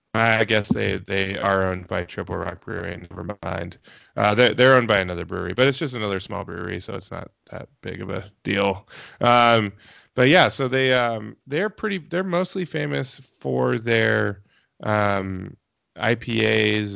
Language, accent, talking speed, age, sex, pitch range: English, American, 170 wpm, 20-39, male, 95-115 Hz